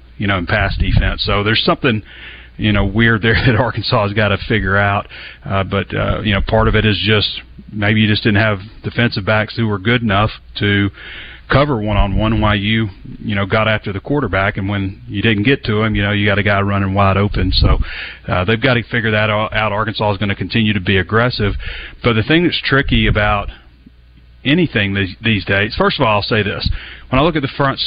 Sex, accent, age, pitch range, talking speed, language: male, American, 30-49, 100-115 Hz, 225 wpm, English